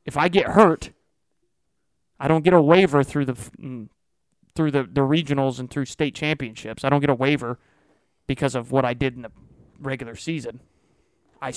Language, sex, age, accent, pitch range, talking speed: English, male, 30-49, American, 130-160 Hz, 180 wpm